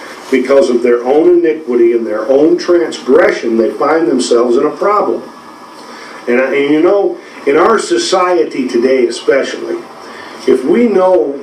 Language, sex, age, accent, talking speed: English, male, 50-69, American, 140 wpm